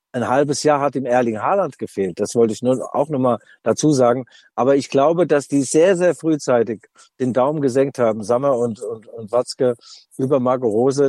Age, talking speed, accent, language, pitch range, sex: 50-69, 195 wpm, German, German, 120-140 Hz, male